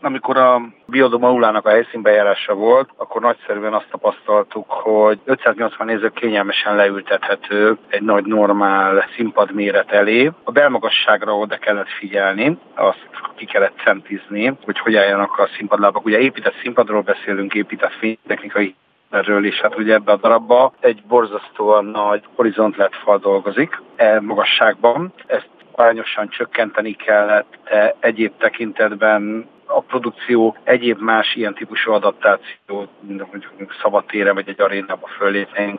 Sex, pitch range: male, 100-115 Hz